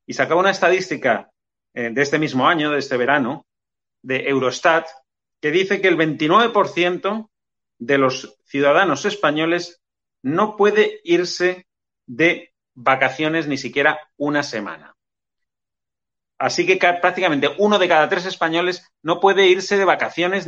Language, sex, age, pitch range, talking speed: Spanish, male, 30-49, 130-165 Hz, 130 wpm